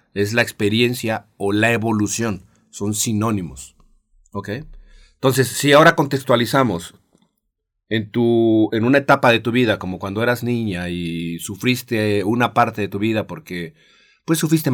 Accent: Mexican